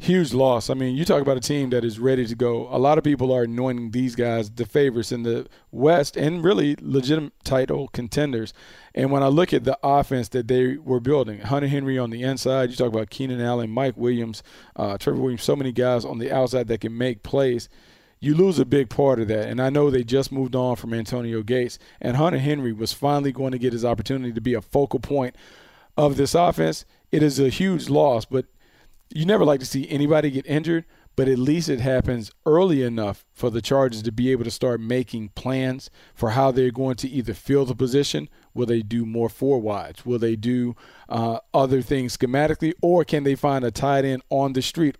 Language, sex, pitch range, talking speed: English, male, 120-140 Hz, 220 wpm